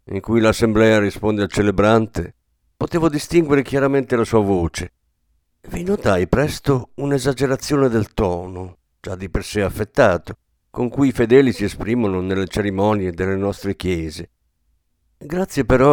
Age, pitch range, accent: 50-69, 95-135 Hz, native